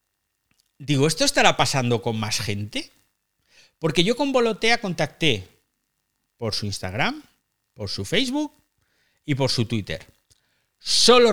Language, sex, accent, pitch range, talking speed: Spanish, male, Spanish, 105-165 Hz, 120 wpm